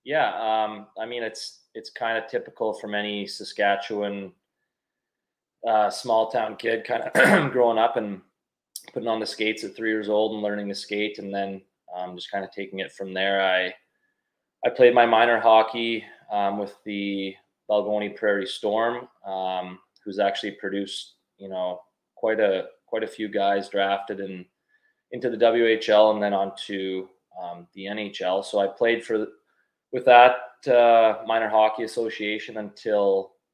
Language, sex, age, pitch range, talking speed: English, male, 20-39, 95-110 Hz, 160 wpm